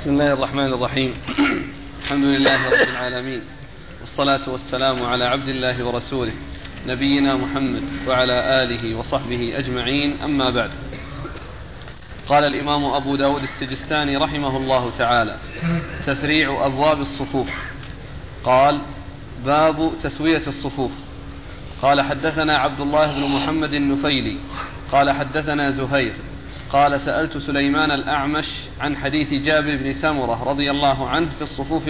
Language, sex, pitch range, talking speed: Arabic, male, 135-155 Hz, 115 wpm